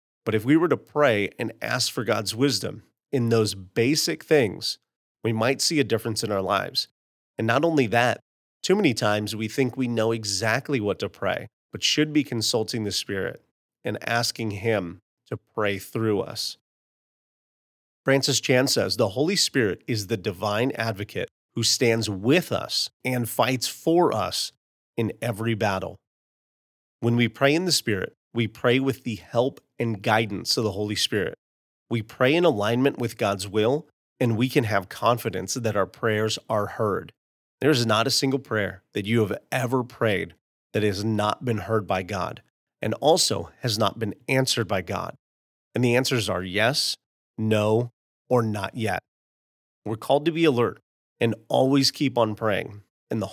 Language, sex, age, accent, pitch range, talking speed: English, male, 30-49, American, 105-130 Hz, 170 wpm